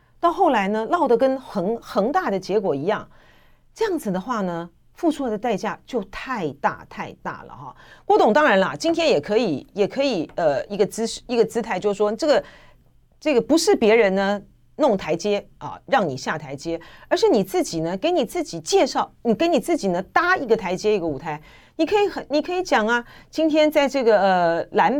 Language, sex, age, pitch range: Chinese, female, 40-59, 195-280 Hz